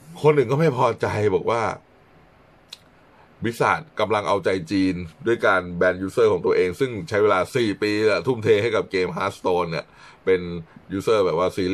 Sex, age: male, 20-39